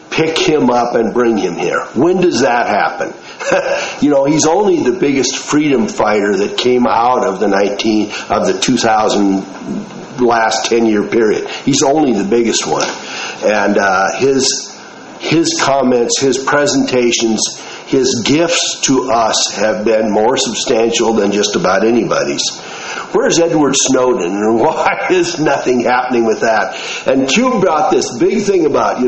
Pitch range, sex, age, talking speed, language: 110-145 Hz, male, 50-69, 155 wpm, English